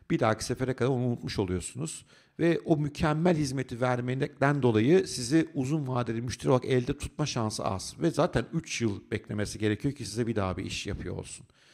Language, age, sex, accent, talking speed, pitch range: Turkish, 50-69, male, native, 185 wpm, 115-155 Hz